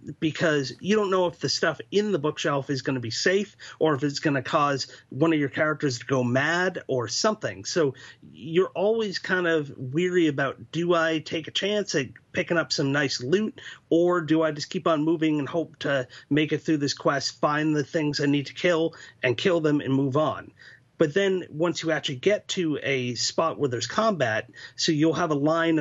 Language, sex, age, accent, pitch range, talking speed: English, male, 30-49, American, 140-170 Hz, 210 wpm